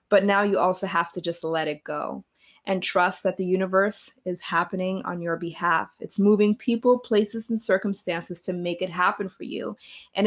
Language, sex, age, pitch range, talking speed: English, female, 20-39, 190-240 Hz, 195 wpm